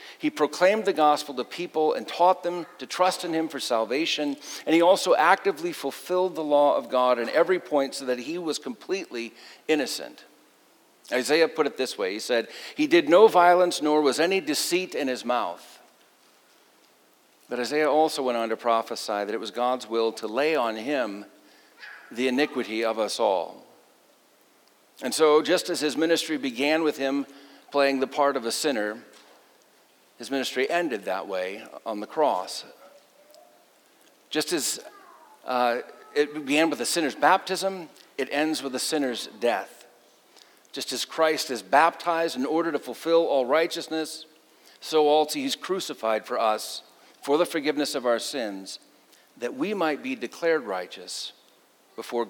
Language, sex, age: English, male, 50-69